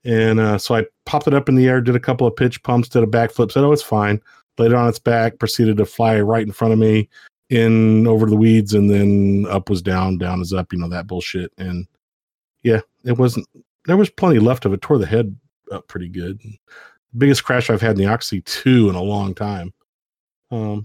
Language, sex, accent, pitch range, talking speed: English, male, American, 105-125 Hz, 235 wpm